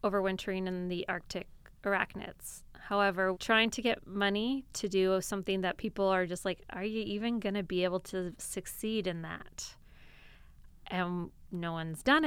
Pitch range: 185-230 Hz